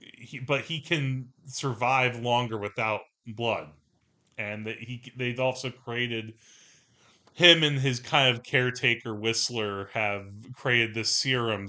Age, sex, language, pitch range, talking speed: 30-49, male, English, 105-130 Hz, 115 wpm